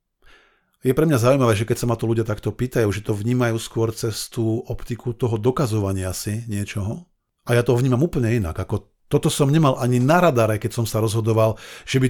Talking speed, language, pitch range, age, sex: 210 wpm, Slovak, 110-140 Hz, 50-69, male